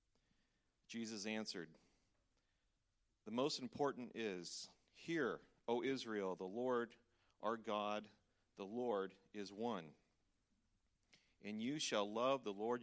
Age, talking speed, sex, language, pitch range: 40-59, 110 wpm, male, English, 100-125 Hz